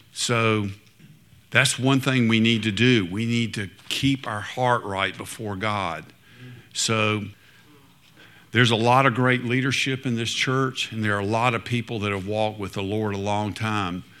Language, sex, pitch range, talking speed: English, male, 100-120 Hz, 180 wpm